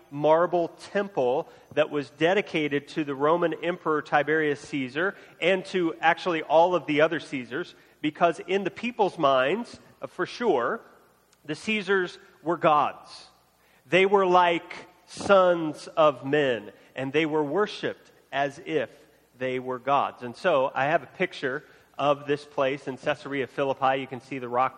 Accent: American